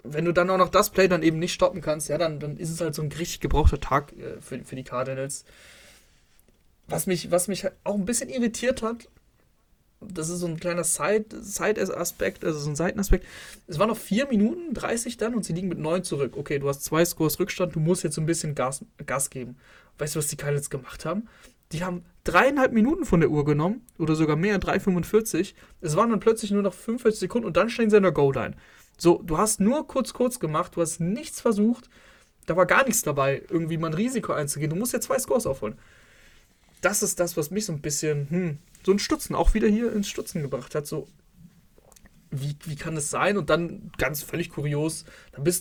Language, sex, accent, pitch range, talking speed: German, male, German, 150-195 Hz, 225 wpm